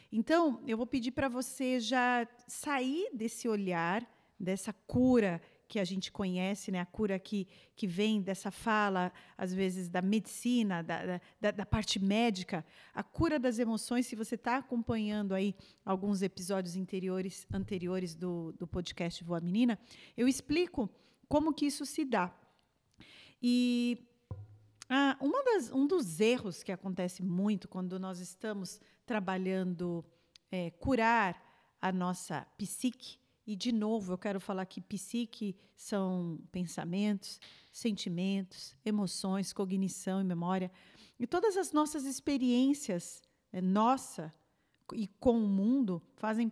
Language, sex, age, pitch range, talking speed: Portuguese, female, 40-59, 185-240 Hz, 135 wpm